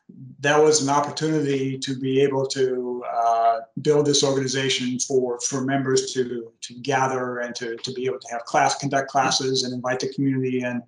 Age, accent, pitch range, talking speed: 50-69, American, 125-145 Hz, 180 wpm